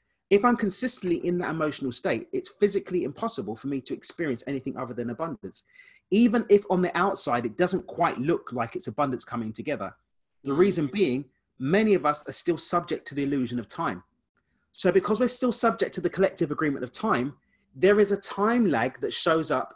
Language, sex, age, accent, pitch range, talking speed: English, male, 30-49, British, 125-200 Hz, 195 wpm